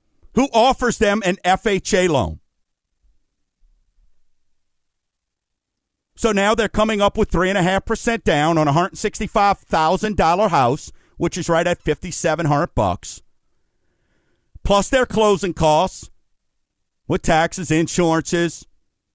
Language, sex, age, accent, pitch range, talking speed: English, male, 50-69, American, 135-205 Hz, 110 wpm